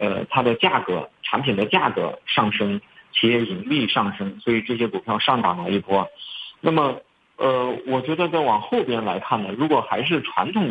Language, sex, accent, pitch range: Chinese, male, native, 110-145 Hz